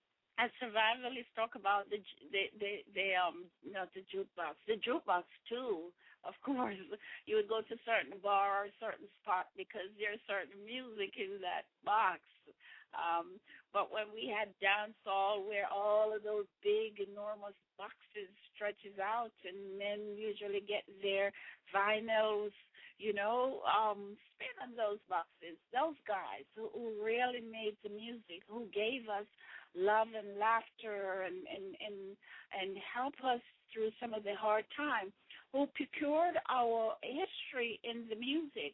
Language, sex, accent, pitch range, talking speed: English, female, American, 205-250 Hz, 150 wpm